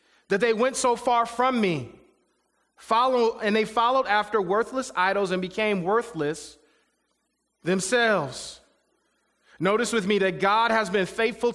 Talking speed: 135 wpm